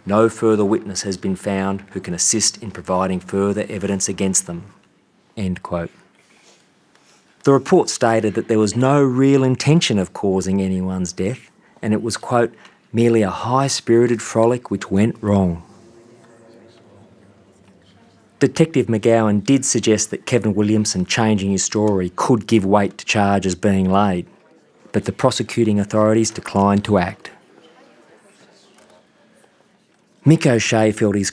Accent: Australian